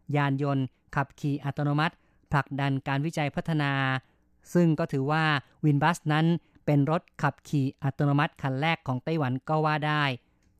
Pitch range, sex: 135-160 Hz, female